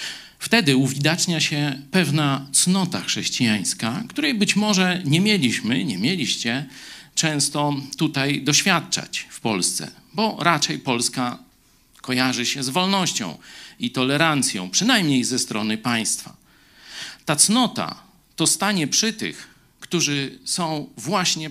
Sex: male